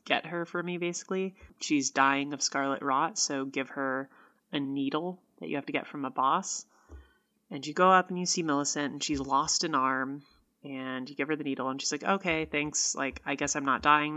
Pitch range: 135-165 Hz